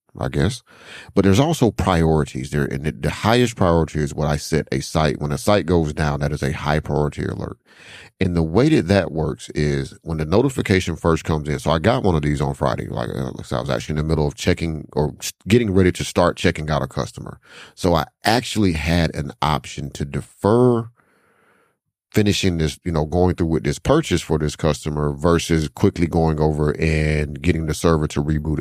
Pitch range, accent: 75-95 Hz, American